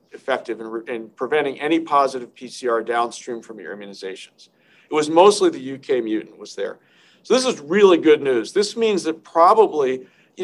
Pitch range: 125-190 Hz